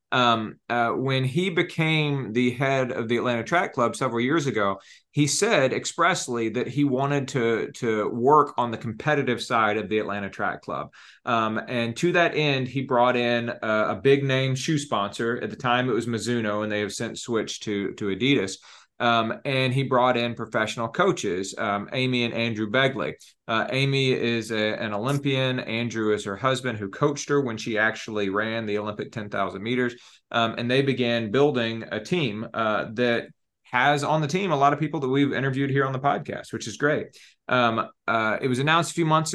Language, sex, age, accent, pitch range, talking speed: English, male, 30-49, American, 115-140 Hz, 195 wpm